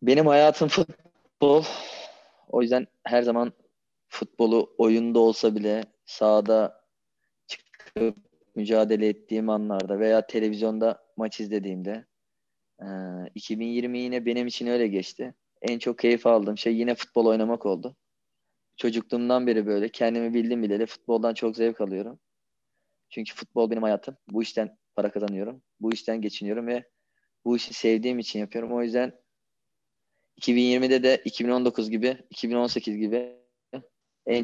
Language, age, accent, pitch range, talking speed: Turkish, 20-39, native, 110-120 Hz, 125 wpm